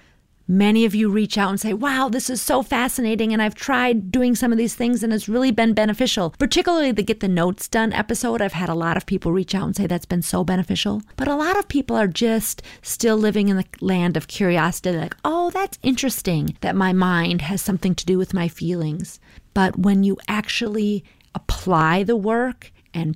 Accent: American